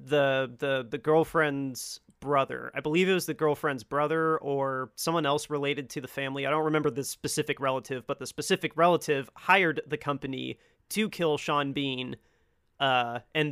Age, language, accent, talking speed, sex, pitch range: 30-49, English, American, 165 wpm, male, 135-160 Hz